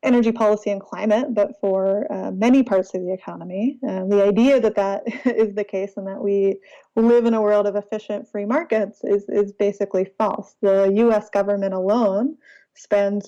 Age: 30-49